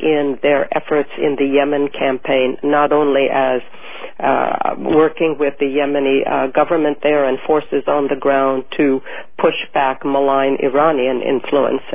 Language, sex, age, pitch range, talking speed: English, female, 50-69, 140-155 Hz, 145 wpm